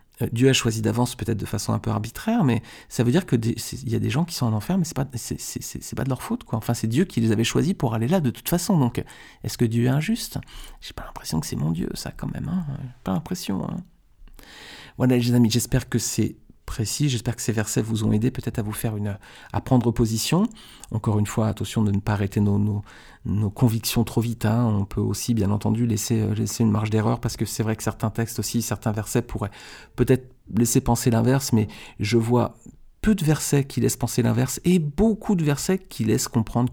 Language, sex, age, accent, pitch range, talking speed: French, male, 40-59, French, 110-125 Hz, 240 wpm